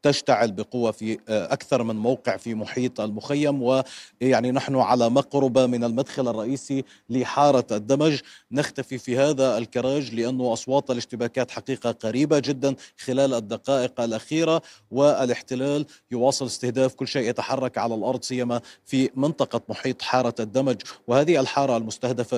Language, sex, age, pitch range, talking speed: Arabic, male, 40-59, 120-145 Hz, 125 wpm